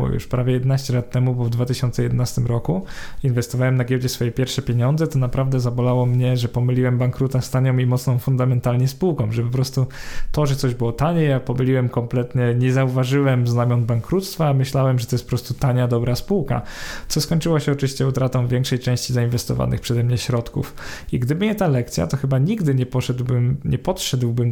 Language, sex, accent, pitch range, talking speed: Polish, male, native, 125-145 Hz, 185 wpm